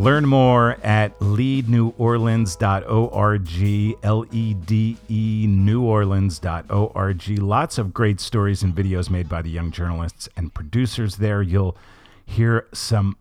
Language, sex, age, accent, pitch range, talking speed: English, male, 50-69, American, 95-115 Hz, 105 wpm